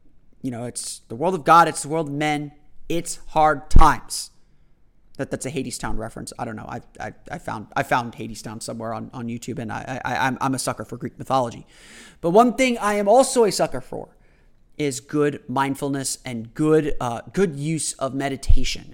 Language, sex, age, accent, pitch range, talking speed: English, male, 30-49, American, 130-175 Hz, 195 wpm